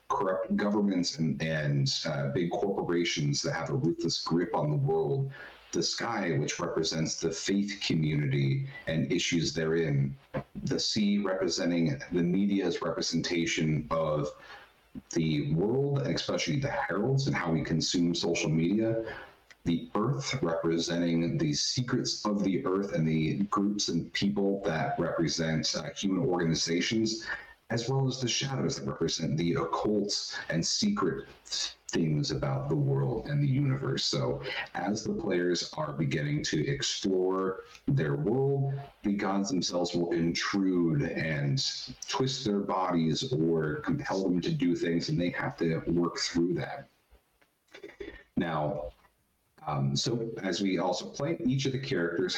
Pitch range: 80-110 Hz